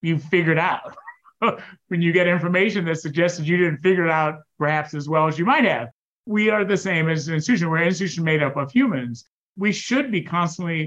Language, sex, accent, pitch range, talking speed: English, male, American, 160-195 Hz, 220 wpm